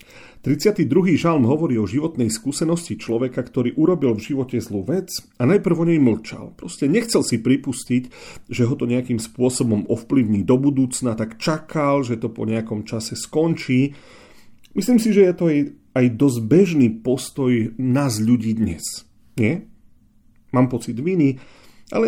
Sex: male